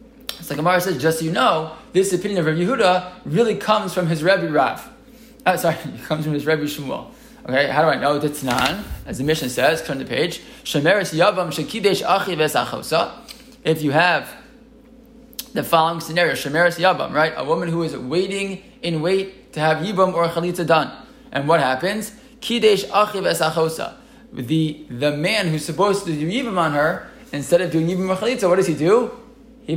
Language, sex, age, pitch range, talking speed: English, male, 20-39, 150-205 Hz, 170 wpm